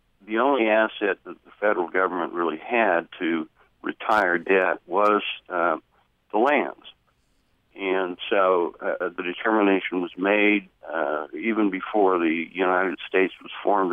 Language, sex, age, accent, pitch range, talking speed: English, male, 60-79, American, 95-125 Hz, 135 wpm